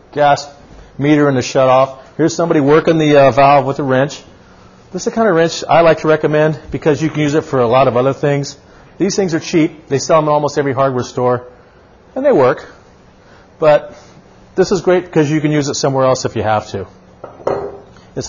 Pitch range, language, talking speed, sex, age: 125-155 Hz, English, 215 wpm, male, 40-59